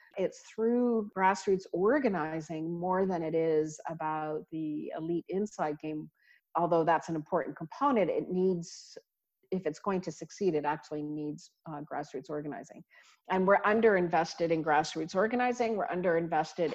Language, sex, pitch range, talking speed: English, female, 160-195 Hz, 140 wpm